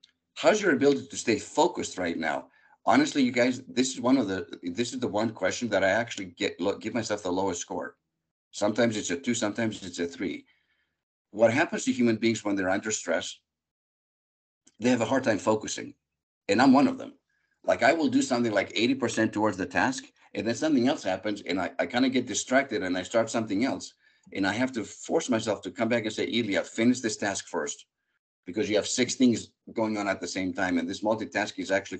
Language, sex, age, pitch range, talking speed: English, male, 50-69, 100-130 Hz, 220 wpm